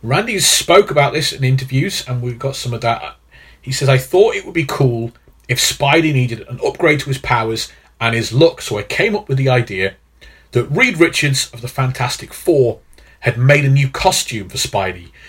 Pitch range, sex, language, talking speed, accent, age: 110-145 Hz, male, English, 205 wpm, British, 40-59